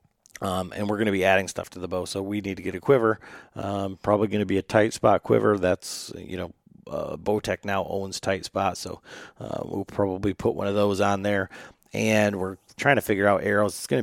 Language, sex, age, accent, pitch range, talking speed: English, male, 30-49, American, 95-110 Hz, 235 wpm